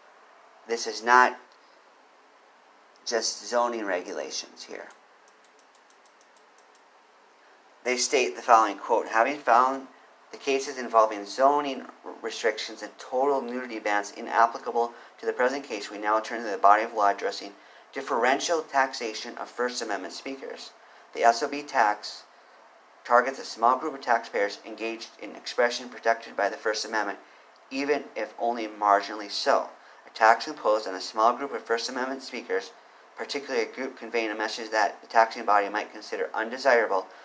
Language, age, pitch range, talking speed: English, 40-59, 110-135 Hz, 140 wpm